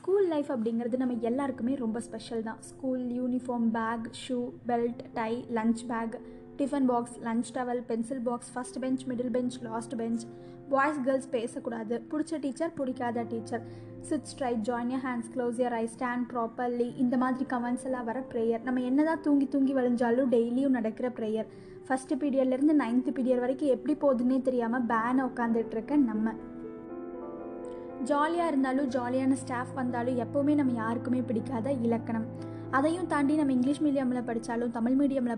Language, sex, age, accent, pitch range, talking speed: Tamil, female, 20-39, native, 230-265 Hz, 150 wpm